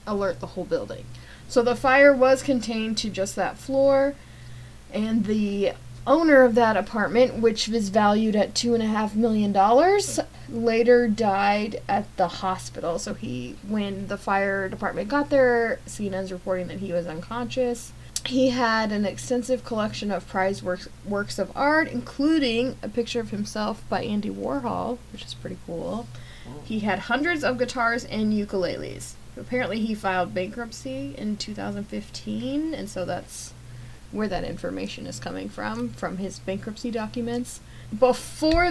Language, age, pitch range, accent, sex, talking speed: English, 10-29, 185-240 Hz, American, female, 150 wpm